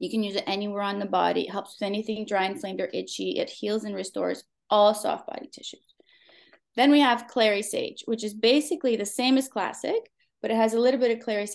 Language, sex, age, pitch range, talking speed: English, female, 20-39, 195-245 Hz, 230 wpm